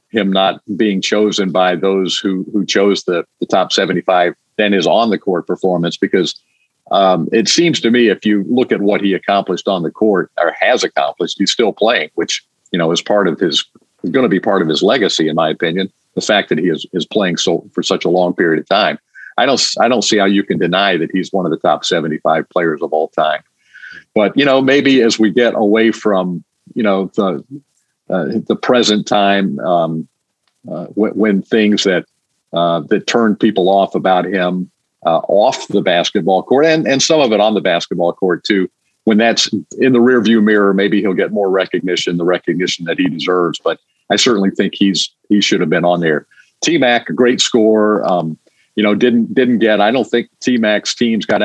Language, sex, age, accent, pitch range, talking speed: English, male, 50-69, American, 95-110 Hz, 215 wpm